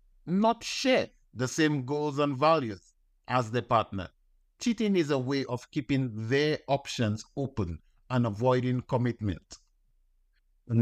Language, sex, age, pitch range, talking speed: English, male, 50-69, 110-140 Hz, 130 wpm